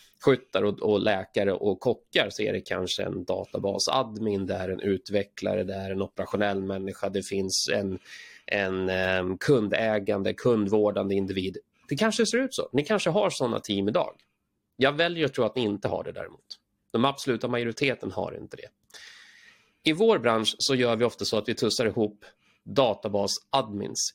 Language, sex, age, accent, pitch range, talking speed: Swedish, male, 30-49, native, 100-130 Hz, 165 wpm